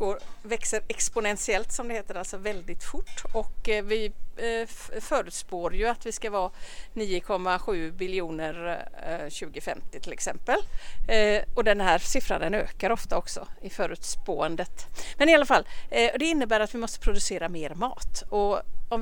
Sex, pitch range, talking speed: female, 190-260 Hz, 165 wpm